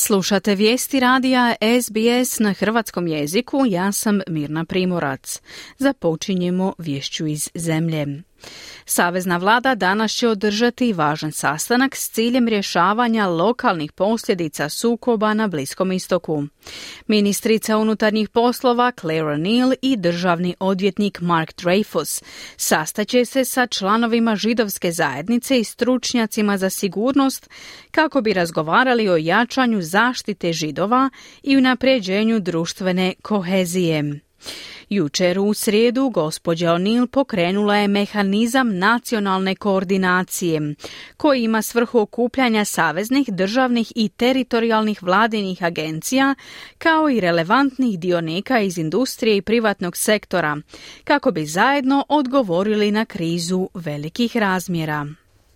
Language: Croatian